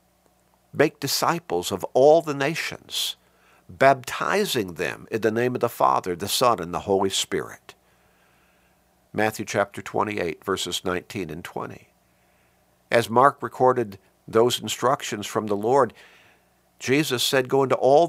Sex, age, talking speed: male, 50-69, 135 wpm